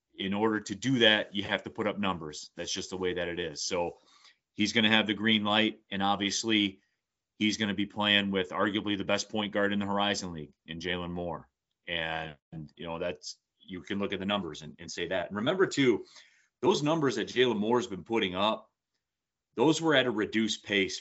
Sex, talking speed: male, 215 wpm